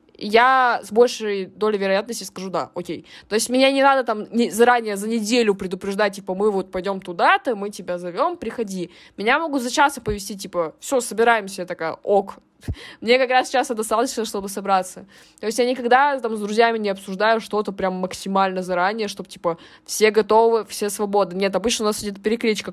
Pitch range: 180-230 Hz